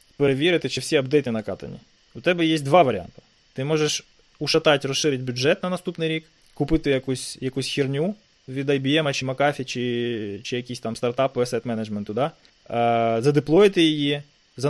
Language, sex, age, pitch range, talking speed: Ukrainian, male, 20-39, 120-150 Hz, 145 wpm